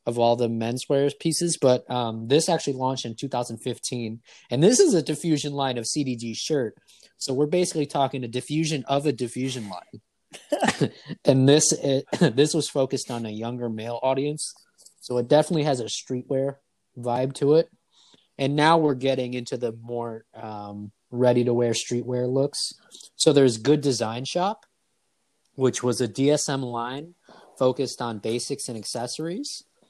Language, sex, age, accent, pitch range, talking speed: English, male, 20-39, American, 115-140 Hz, 155 wpm